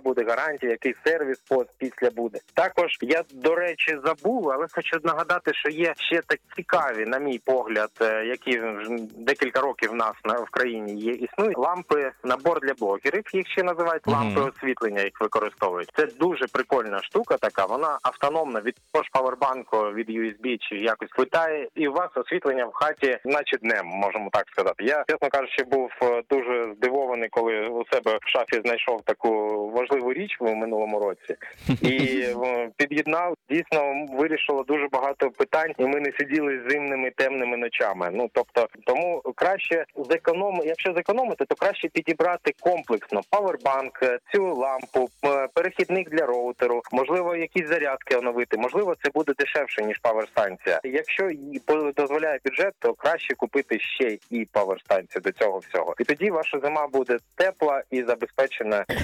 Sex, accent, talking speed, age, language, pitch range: male, native, 150 wpm, 20-39, Ukrainian, 120-160 Hz